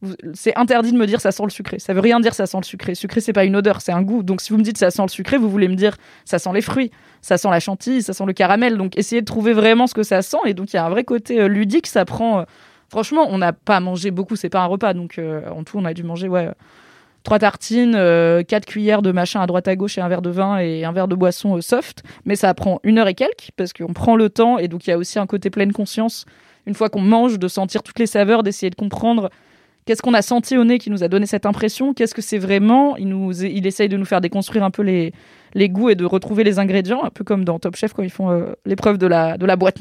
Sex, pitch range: female, 185-220 Hz